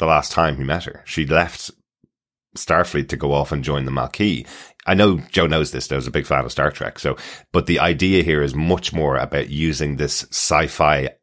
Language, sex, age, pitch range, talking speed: English, male, 30-49, 75-95 Hz, 215 wpm